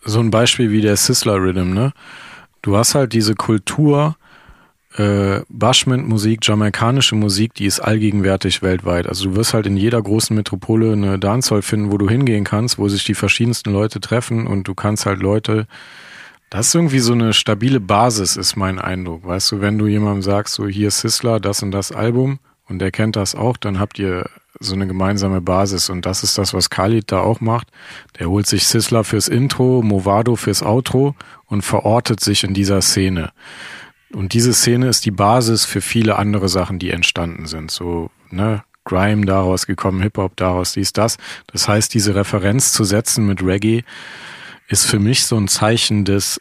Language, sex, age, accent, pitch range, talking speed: German, male, 40-59, German, 95-115 Hz, 185 wpm